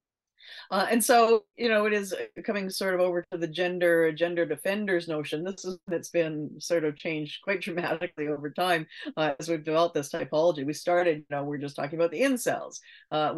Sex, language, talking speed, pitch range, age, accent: female, English, 205 wpm, 140-170 Hz, 40-59, American